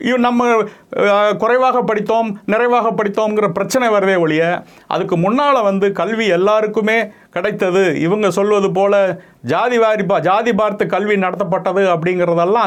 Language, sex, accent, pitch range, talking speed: Tamil, male, native, 170-225 Hz, 120 wpm